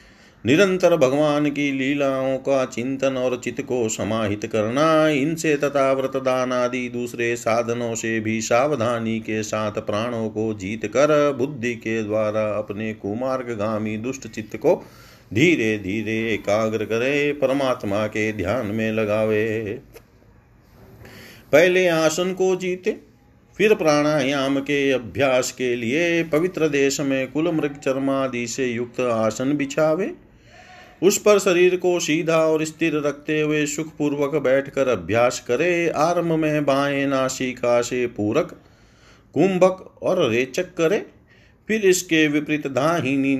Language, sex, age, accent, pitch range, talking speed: Hindi, male, 40-59, native, 115-155 Hz, 125 wpm